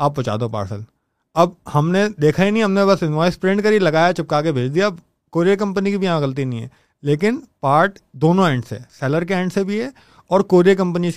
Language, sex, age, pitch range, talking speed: Urdu, male, 30-49, 150-195 Hz, 235 wpm